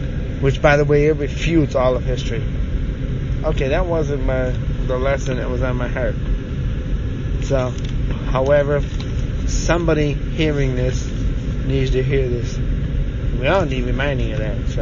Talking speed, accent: 145 wpm, American